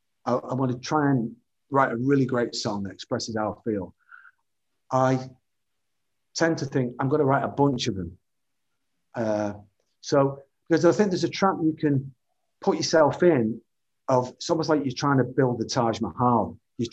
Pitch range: 115-155 Hz